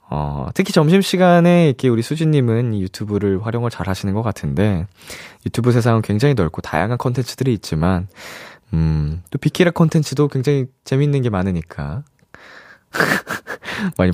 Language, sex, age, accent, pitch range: Korean, male, 20-39, native, 95-155 Hz